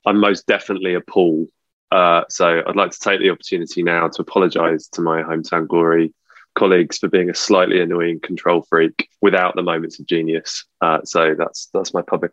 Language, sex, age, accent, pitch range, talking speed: English, male, 20-39, British, 85-105 Hz, 190 wpm